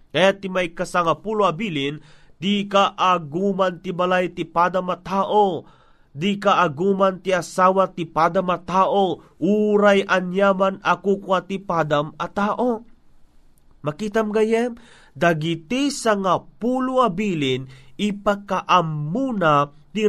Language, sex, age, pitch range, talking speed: Filipino, male, 30-49, 165-205 Hz, 100 wpm